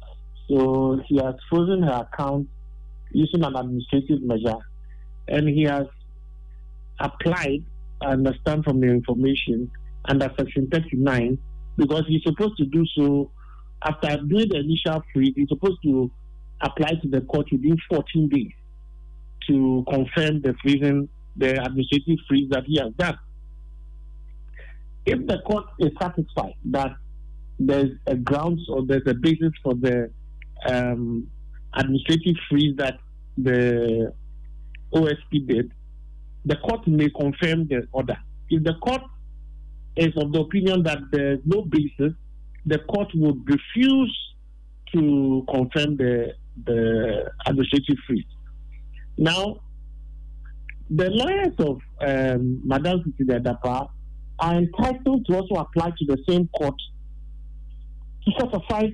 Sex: male